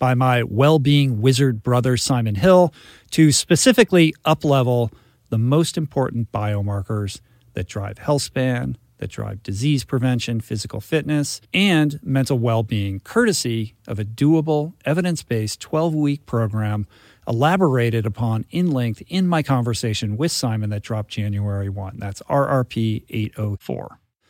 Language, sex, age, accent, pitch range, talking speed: English, male, 50-69, American, 110-145 Hz, 125 wpm